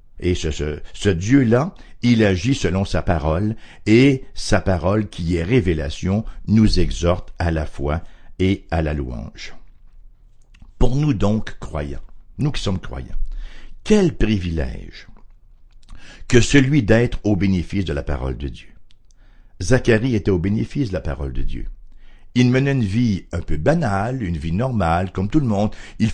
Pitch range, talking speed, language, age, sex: 80-115 Hz, 155 wpm, English, 60-79, male